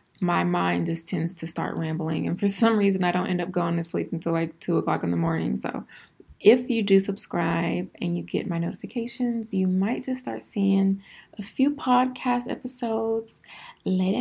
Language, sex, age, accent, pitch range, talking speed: English, female, 20-39, American, 170-215 Hz, 190 wpm